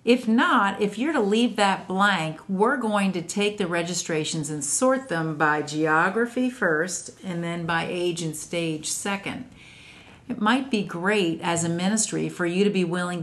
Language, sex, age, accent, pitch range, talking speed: English, female, 50-69, American, 165-215 Hz, 175 wpm